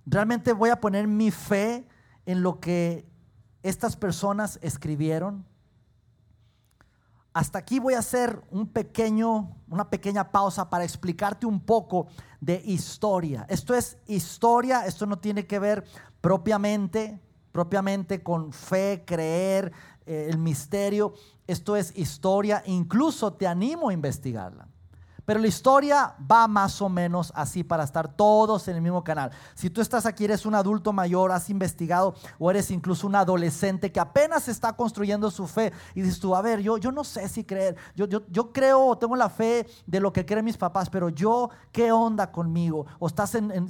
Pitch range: 165-215 Hz